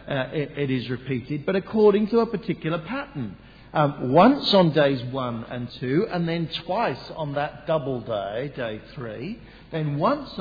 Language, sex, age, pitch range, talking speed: English, male, 50-69, 125-180 Hz, 165 wpm